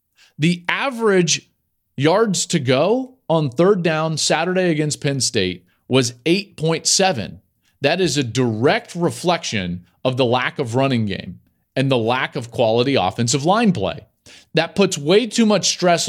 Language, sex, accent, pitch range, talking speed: English, male, American, 115-165 Hz, 145 wpm